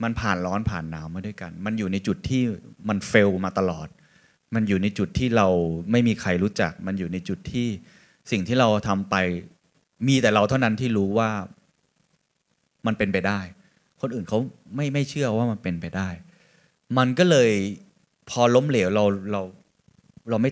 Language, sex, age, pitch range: Thai, male, 20-39, 95-120 Hz